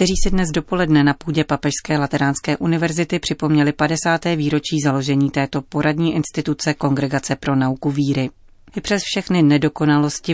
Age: 30-49